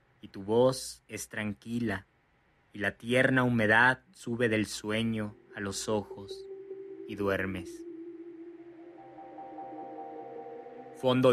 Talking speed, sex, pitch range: 95 wpm, male, 105-130 Hz